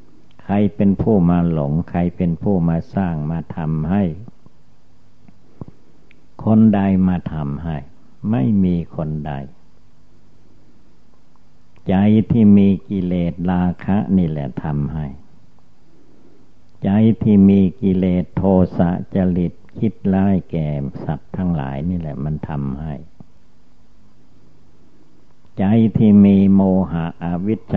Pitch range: 80-100 Hz